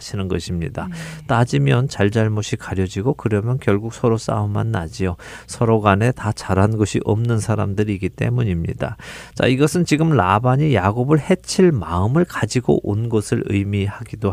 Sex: male